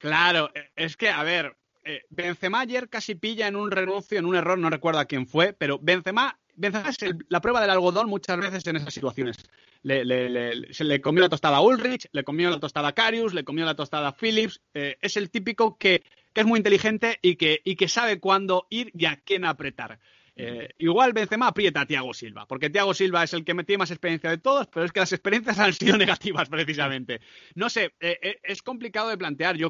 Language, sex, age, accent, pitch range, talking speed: Spanish, male, 30-49, Spanish, 160-205 Hz, 230 wpm